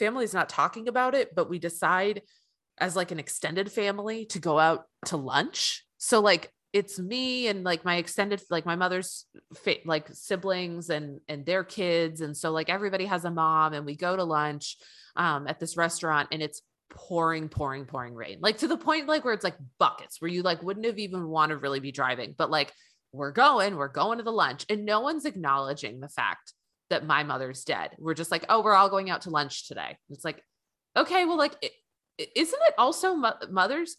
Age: 20-39